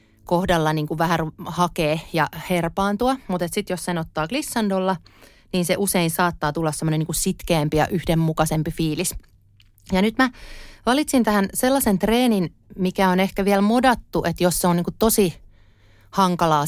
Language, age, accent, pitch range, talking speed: Finnish, 30-49, native, 155-195 Hz, 140 wpm